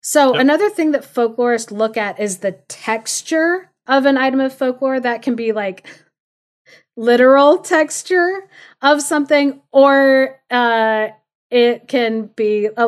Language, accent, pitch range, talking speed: English, American, 200-265 Hz, 135 wpm